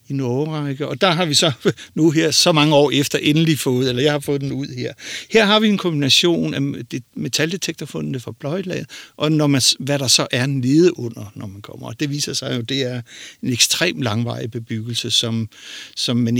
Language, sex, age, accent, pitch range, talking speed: Danish, male, 60-79, native, 120-155 Hz, 215 wpm